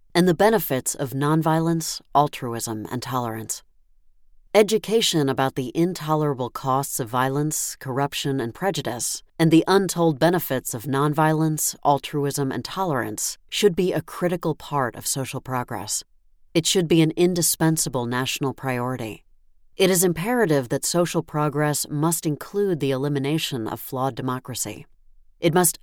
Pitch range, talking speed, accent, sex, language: 125-165 Hz, 130 wpm, American, female, English